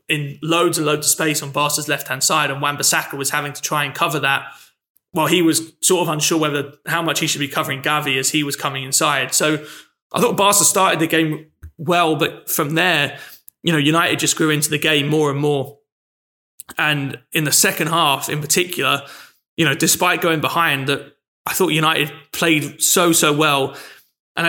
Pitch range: 150-175 Hz